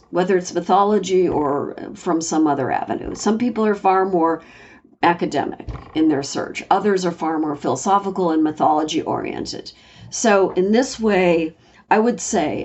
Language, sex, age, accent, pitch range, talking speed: English, female, 50-69, American, 160-200 Hz, 150 wpm